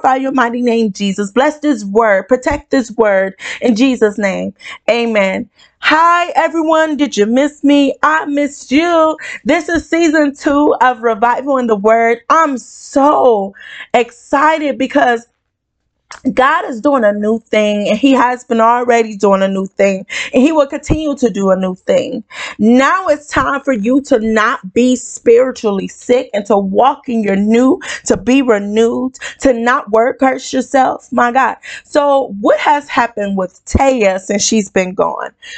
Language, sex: English, female